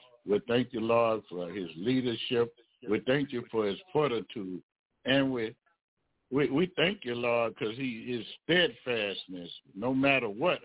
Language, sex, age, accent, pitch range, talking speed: English, male, 60-79, American, 100-130 Hz, 150 wpm